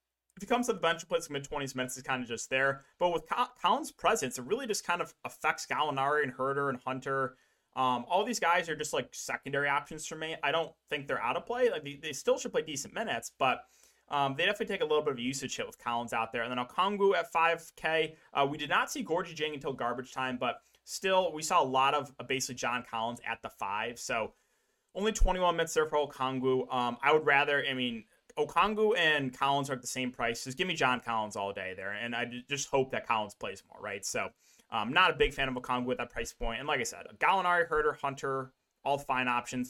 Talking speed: 245 wpm